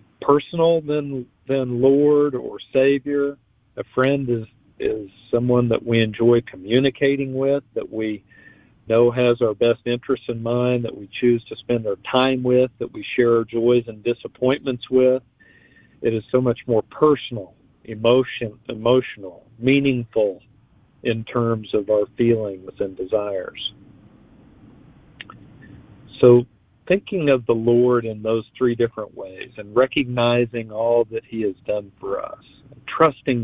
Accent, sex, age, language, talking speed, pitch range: American, male, 50-69, English, 140 wpm, 115-130 Hz